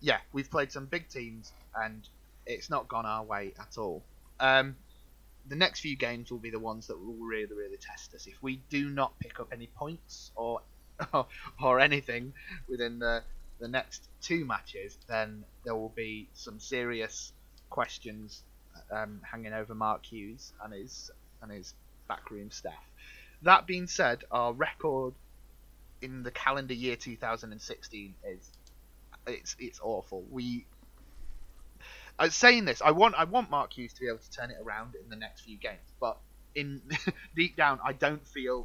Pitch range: 110-140 Hz